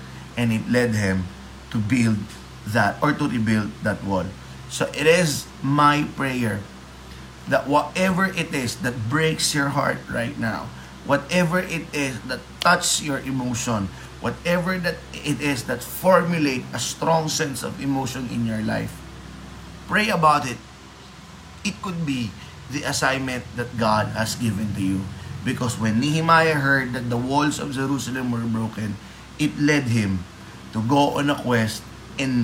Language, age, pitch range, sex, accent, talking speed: Filipino, 20-39, 105-150 Hz, male, native, 150 wpm